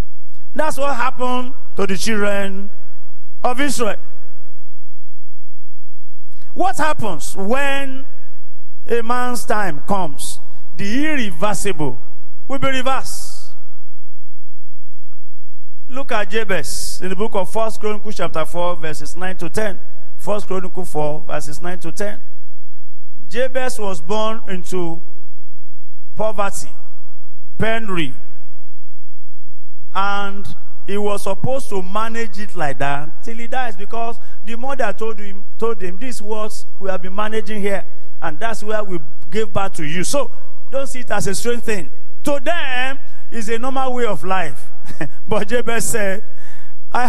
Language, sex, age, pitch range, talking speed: English, male, 40-59, 180-235 Hz, 130 wpm